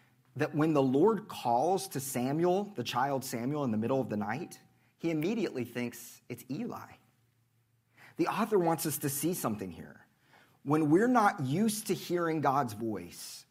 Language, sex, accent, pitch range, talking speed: English, male, American, 115-145 Hz, 165 wpm